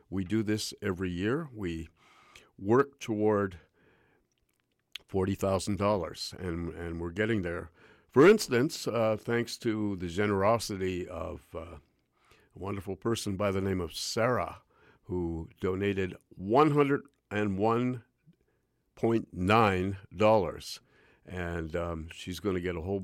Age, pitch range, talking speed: 50-69, 90-110 Hz, 105 wpm